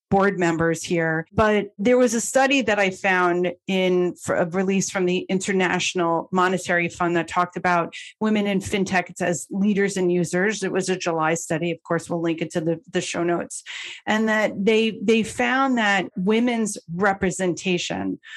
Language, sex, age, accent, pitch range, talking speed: English, female, 30-49, American, 180-215 Hz, 170 wpm